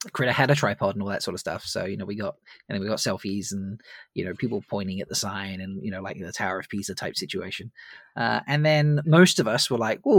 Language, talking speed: English, 285 wpm